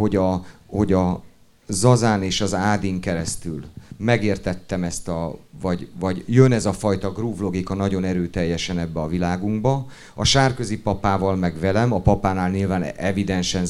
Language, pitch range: Hungarian, 95-120 Hz